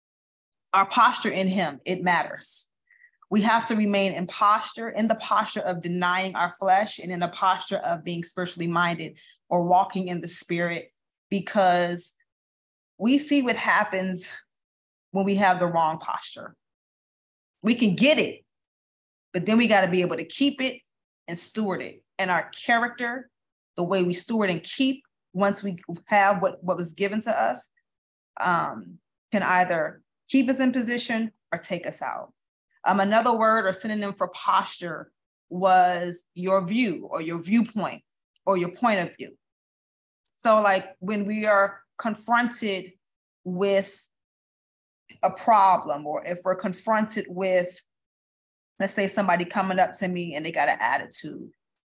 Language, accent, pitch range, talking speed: English, American, 175-220 Hz, 150 wpm